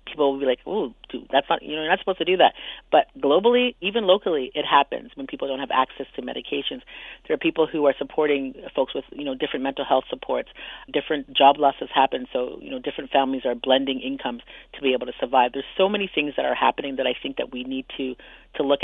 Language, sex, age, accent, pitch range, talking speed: English, female, 40-59, American, 130-155 Hz, 235 wpm